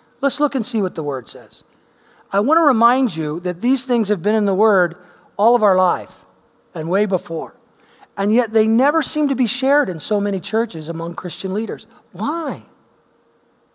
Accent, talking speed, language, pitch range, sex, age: American, 190 wpm, English, 180-235 Hz, male, 40-59